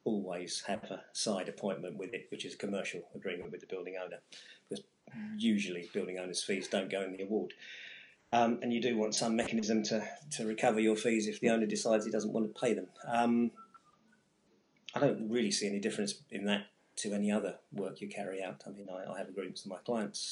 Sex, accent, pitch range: male, British, 100-115 Hz